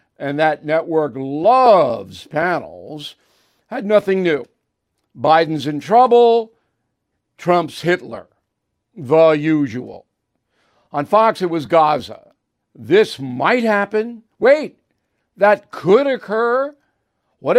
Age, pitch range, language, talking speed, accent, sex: 60-79, 145-195 Hz, English, 95 wpm, American, male